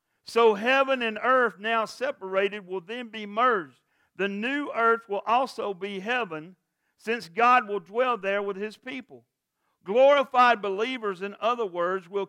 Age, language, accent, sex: 50-69, English, American, male